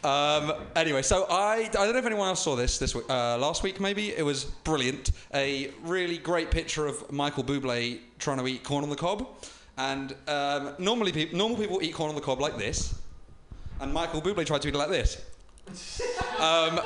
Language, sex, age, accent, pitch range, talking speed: English, male, 30-49, British, 130-175 Hz, 205 wpm